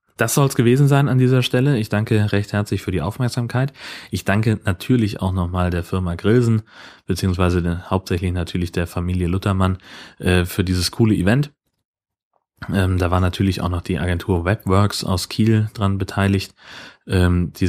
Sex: male